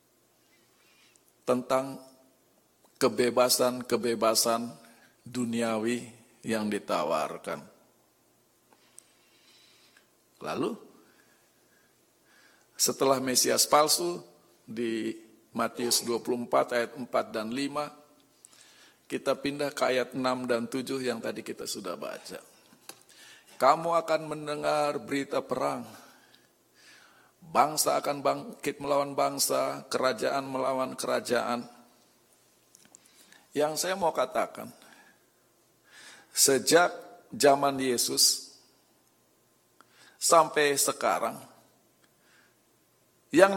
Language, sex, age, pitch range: Indonesian, male, 50-69, 120-150 Hz